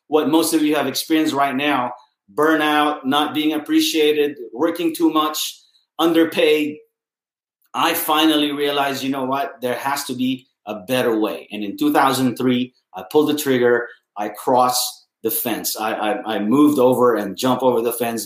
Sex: male